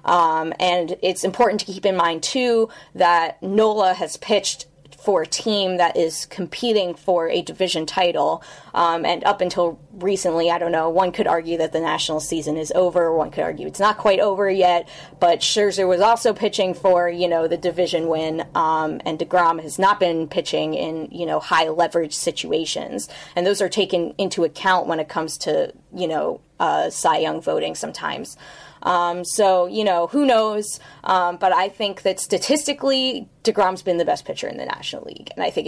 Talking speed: 190 wpm